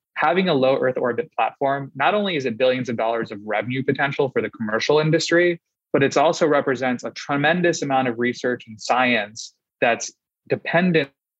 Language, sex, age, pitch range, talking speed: English, male, 20-39, 115-140 Hz, 175 wpm